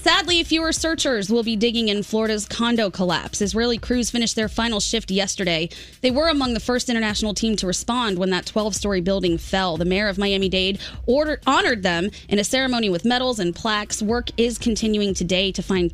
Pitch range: 190-250 Hz